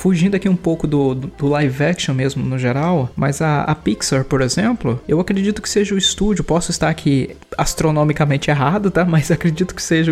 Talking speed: 200 wpm